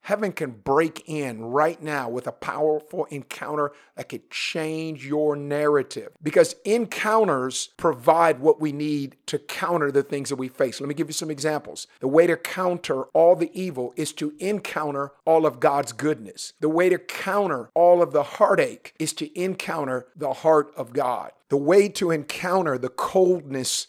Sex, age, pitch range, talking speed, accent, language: male, 50-69, 140-170 Hz, 175 wpm, American, English